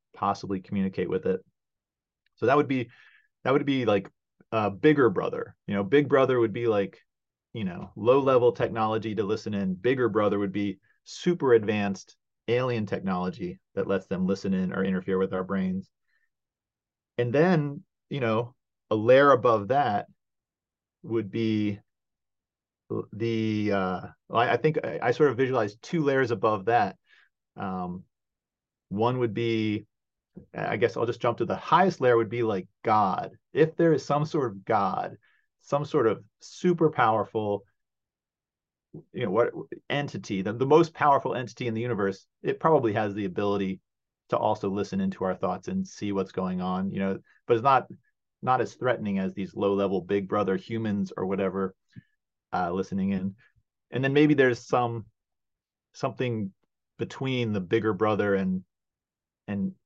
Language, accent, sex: English, American, male